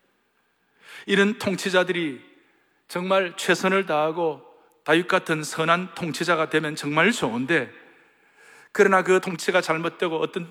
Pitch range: 145-195 Hz